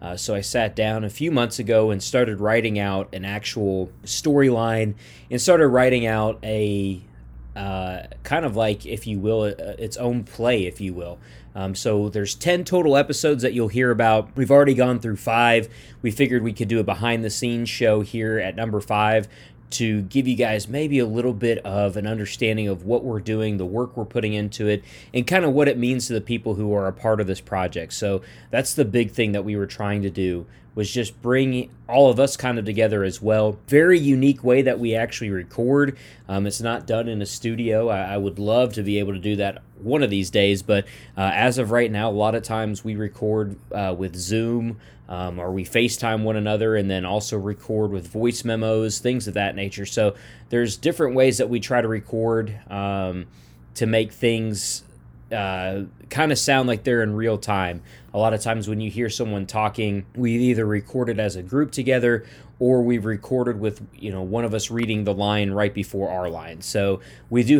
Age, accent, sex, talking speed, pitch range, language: 20-39, American, male, 215 wpm, 100-120 Hz, English